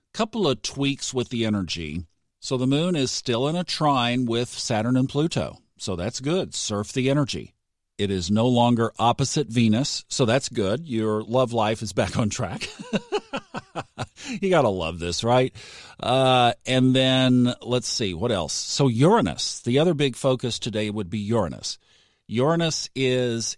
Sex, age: male, 50-69